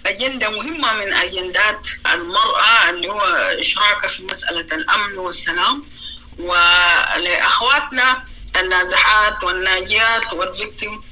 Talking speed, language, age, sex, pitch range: 85 wpm, Arabic, 30-49, female, 200-310 Hz